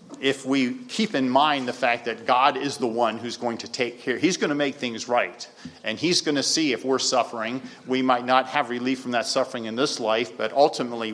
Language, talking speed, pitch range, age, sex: English, 260 wpm, 115-135 Hz, 50-69, male